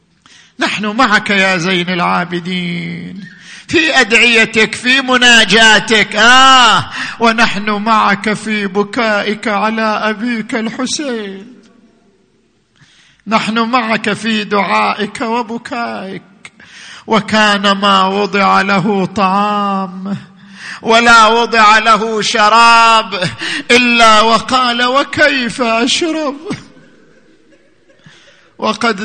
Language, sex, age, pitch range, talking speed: Arabic, male, 50-69, 210-255 Hz, 75 wpm